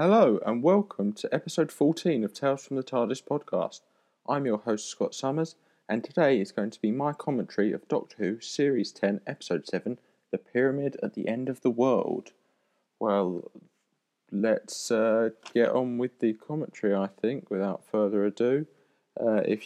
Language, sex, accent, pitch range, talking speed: English, male, British, 105-130 Hz, 170 wpm